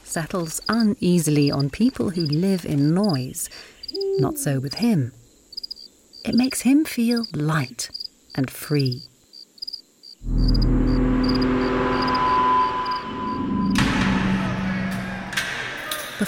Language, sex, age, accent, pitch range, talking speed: English, female, 40-59, British, 130-205 Hz, 75 wpm